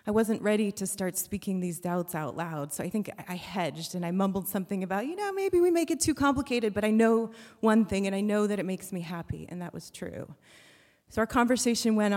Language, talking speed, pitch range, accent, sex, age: English, 240 wpm, 180-220 Hz, American, female, 30-49